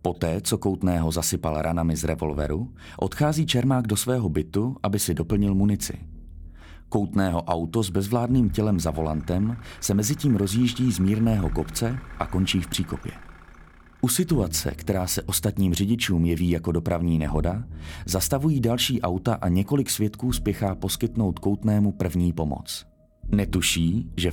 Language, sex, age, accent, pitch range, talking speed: Czech, male, 30-49, native, 80-115 Hz, 140 wpm